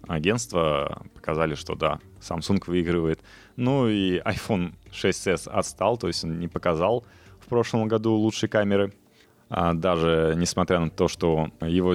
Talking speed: 140 wpm